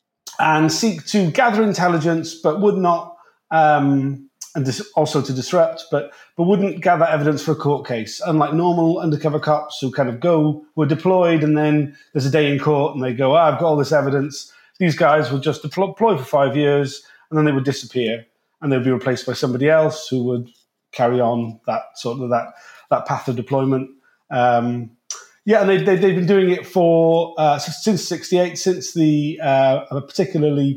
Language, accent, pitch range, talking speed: English, British, 140-170 Hz, 190 wpm